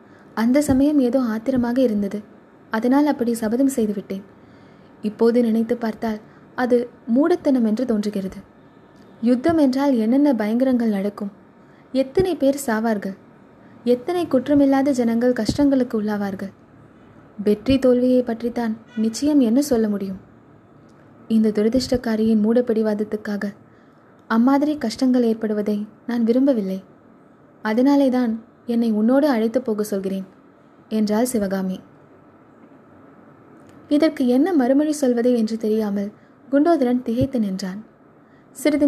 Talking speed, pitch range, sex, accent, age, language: 95 wpm, 210-260 Hz, female, native, 20-39, Tamil